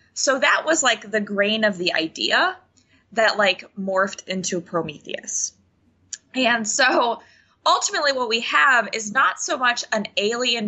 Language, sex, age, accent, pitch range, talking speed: English, female, 20-39, American, 170-220 Hz, 145 wpm